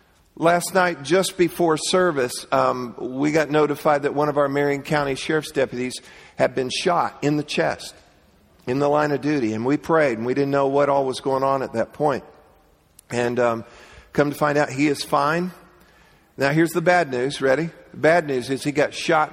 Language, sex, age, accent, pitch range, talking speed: English, male, 50-69, American, 125-150 Hz, 200 wpm